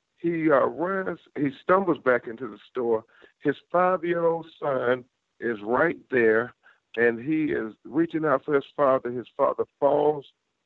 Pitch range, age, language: 115-150 Hz, 50-69, English